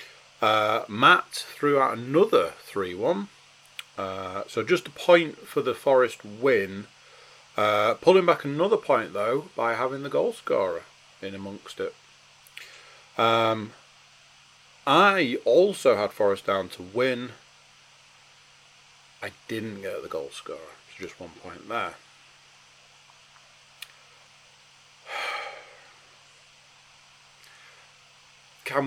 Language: English